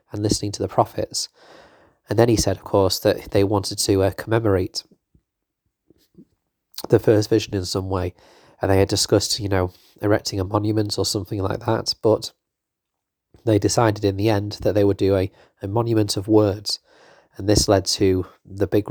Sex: male